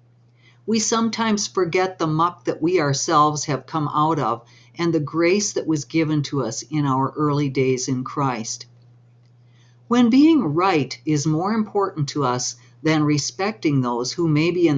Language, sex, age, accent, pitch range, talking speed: English, female, 60-79, American, 125-175 Hz, 165 wpm